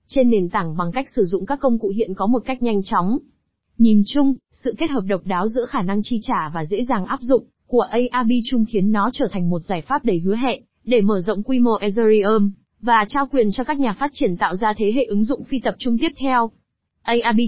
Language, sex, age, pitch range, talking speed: Vietnamese, female, 20-39, 210-245 Hz, 245 wpm